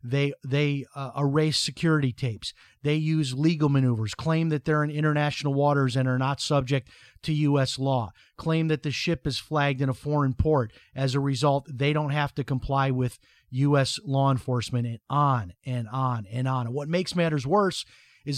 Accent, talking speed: American, 180 wpm